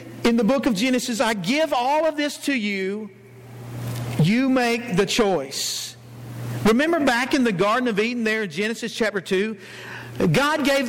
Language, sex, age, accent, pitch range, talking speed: English, male, 50-69, American, 140-235 Hz, 165 wpm